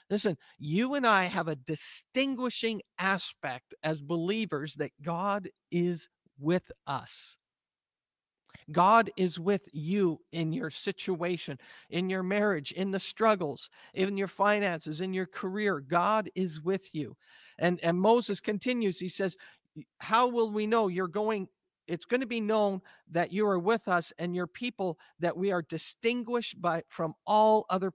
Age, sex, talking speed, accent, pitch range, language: 50-69, male, 150 wpm, American, 170-210 Hz, English